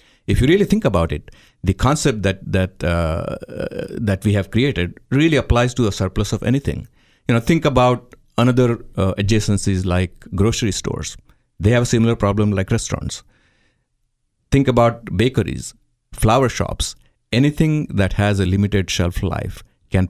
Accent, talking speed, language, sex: Indian, 155 wpm, English, male